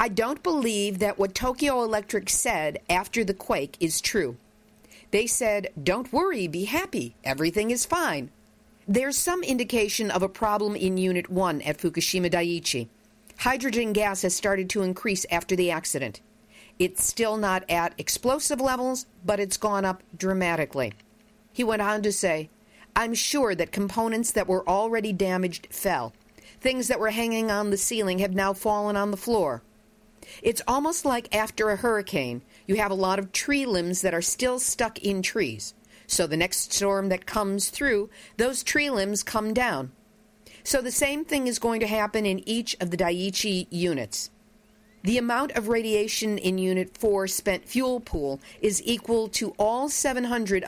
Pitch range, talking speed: 185-225 Hz, 165 wpm